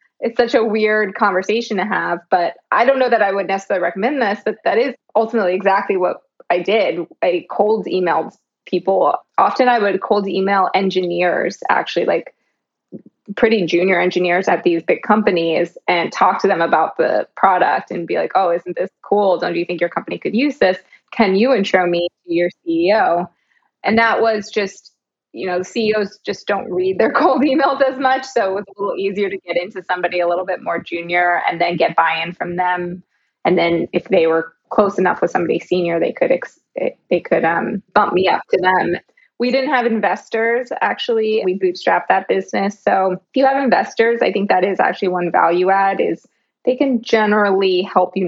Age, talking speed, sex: 20-39, 200 wpm, female